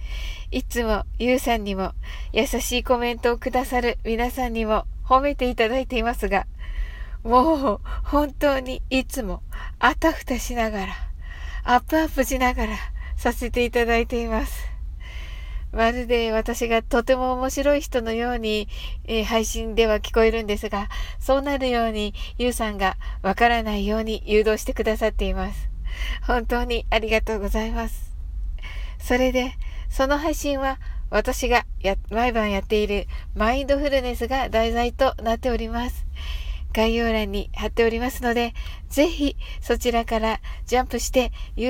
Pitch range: 210-250 Hz